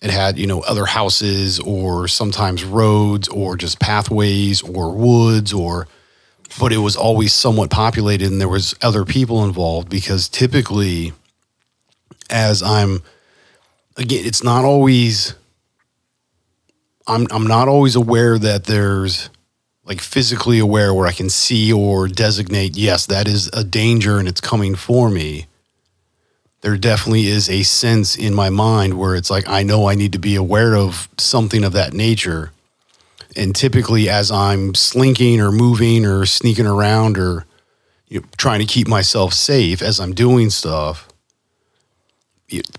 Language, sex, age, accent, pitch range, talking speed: English, male, 40-59, American, 95-115 Hz, 150 wpm